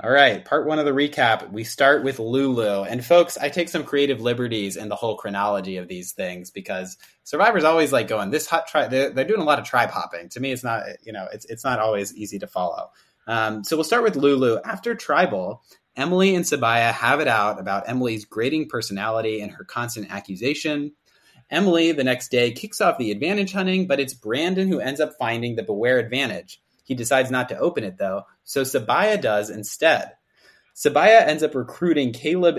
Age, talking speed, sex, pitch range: 30-49, 205 wpm, male, 110-160 Hz